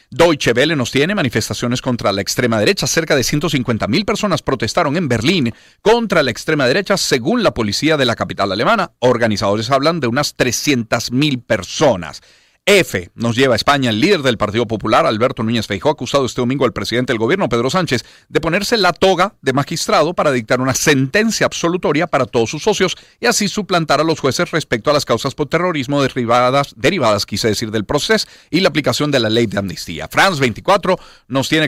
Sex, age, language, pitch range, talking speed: male, 50-69, Spanish, 115-155 Hz, 190 wpm